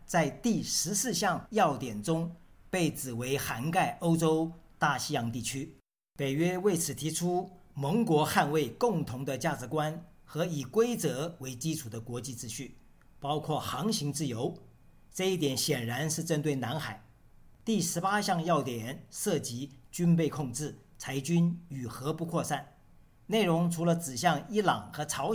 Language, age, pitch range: Chinese, 50-69, 140-175 Hz